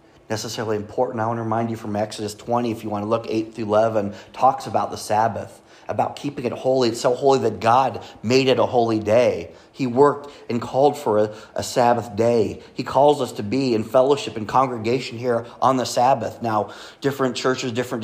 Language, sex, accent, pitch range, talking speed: English, male, American, 105-130 Hz, 205 wpm